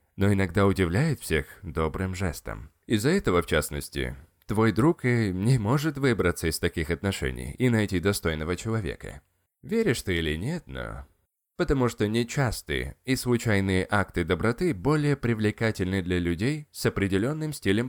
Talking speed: 140 wpm